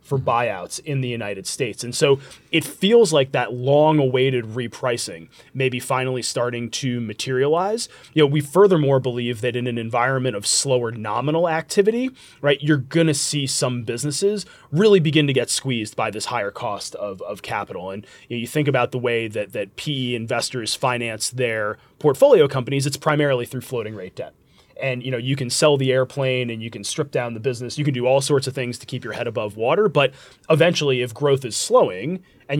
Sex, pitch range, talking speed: male, 120-145 Hz, 200 wpm